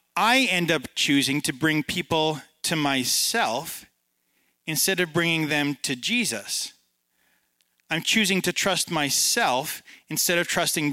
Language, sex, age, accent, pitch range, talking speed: English, male, 30-49, American, 145-190 Hz, 125 wpm